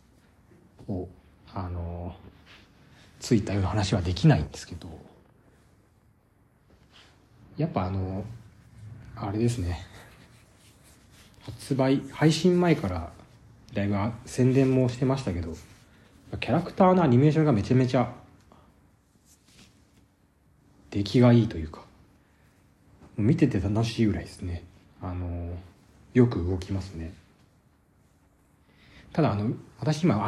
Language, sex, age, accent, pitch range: Japanese, male, 40-59, native, 90-130 Hz